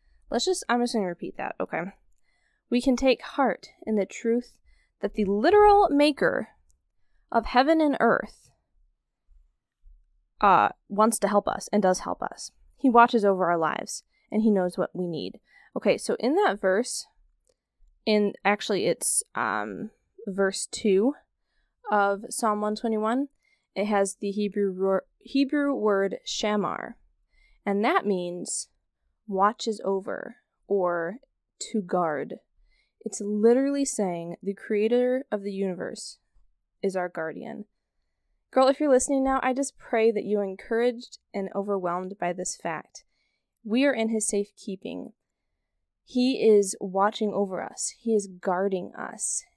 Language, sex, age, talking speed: English, female, 10-29, 140 wpm